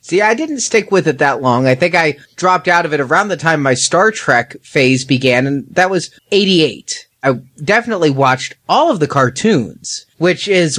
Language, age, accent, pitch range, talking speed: English, 30-49, American, 140-185 Hz, 200 wpm